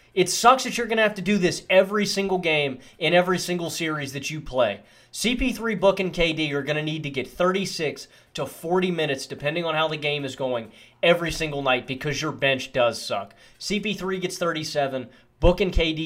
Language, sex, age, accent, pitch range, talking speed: English, male, 20-39, American, 130-175 Hz, 205 wpm